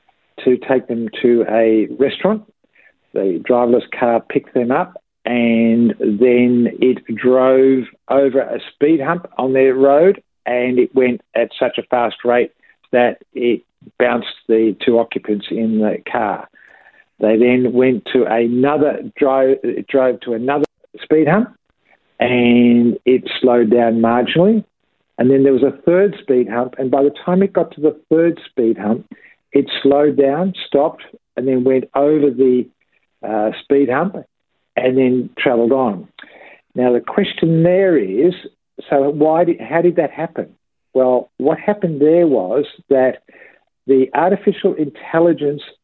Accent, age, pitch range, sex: Australian, 50-69, 120-155 Hz, male